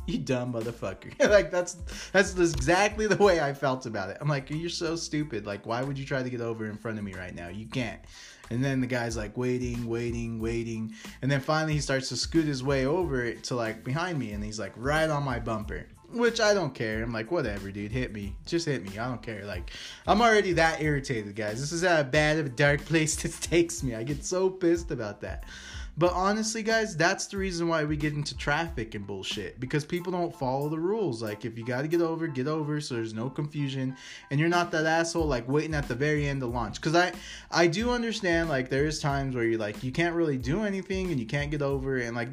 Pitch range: 115-165 Hz